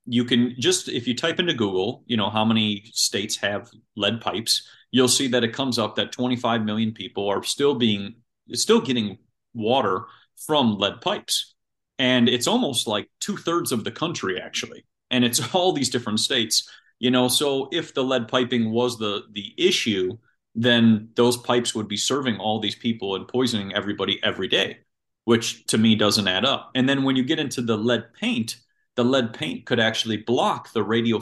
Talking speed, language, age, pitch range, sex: 190 wpm, English, 30-49, 110-130 Hz, male